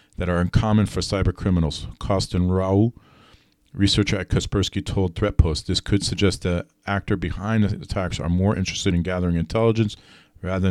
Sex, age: male, 40-59